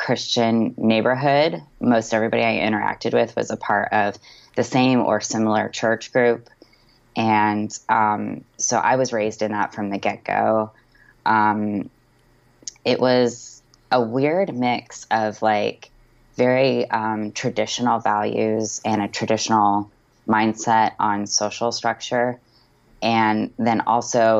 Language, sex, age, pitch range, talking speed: English, female, 20-39, 105-120 Hz, 120 wpm